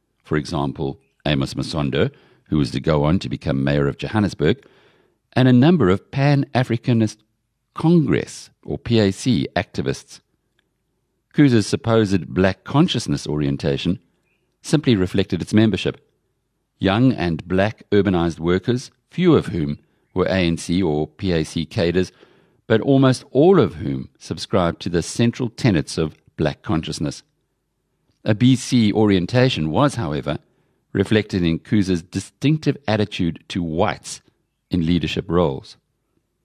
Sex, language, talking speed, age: male, English, 120 wpm, 50-69